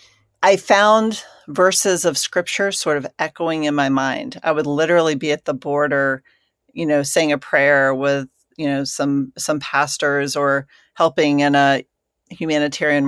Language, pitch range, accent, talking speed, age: English, 140-175 Hz, American, 155 wpm, 40-59